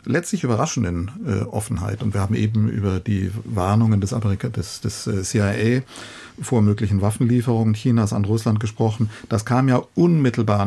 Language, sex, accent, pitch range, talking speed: German, male, German, 105-120 Hz, 145 wpm